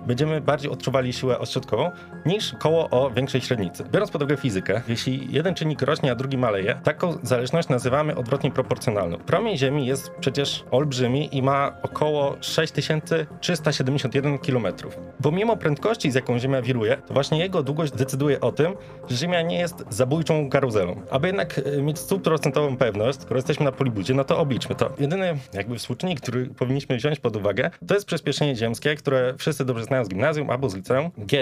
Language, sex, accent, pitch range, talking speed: Polish, male, native, 130-155 Hz, 170 wpm